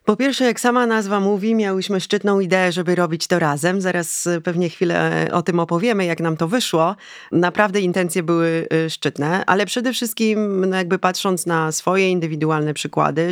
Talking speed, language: 160 wpm, Polish